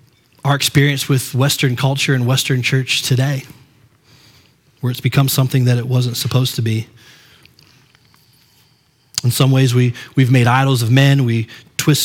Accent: American